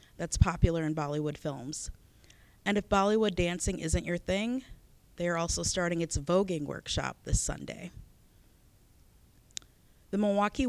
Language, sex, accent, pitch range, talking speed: English, female, American, 165-200 Hz, 130 wpm